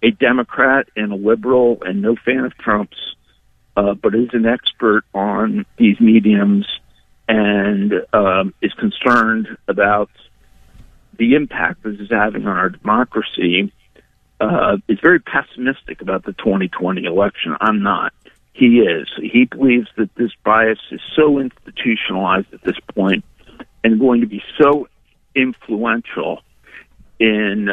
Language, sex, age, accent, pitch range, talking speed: English, male, 50-69, American, 105-125 Hz, 130 wpm